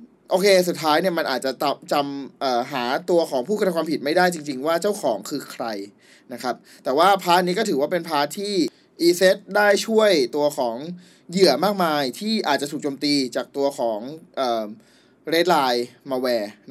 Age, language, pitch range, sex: 20-39, Thai, 140-190 Hz, male